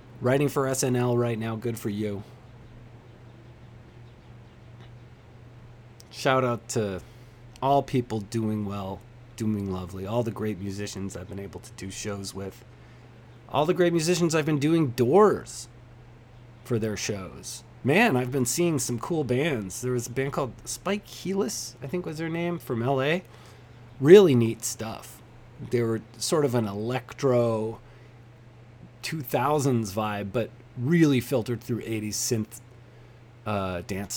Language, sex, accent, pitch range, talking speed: English, male, American, 115-130 Hz, 140 wpm